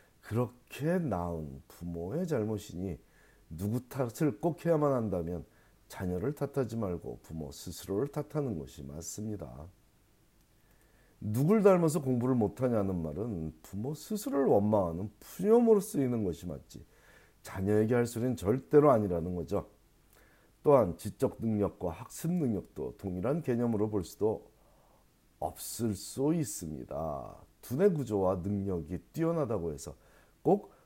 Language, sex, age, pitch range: Korean, male, 40-59, 95-140 Hz